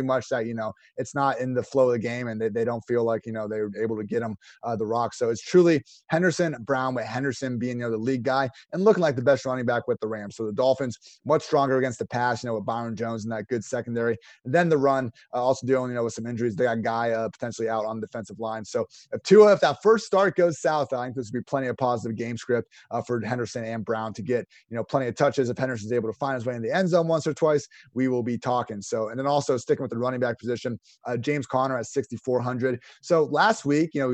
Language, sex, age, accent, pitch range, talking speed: English, male, 30-49, American, 115-135 Hz, 285 wpm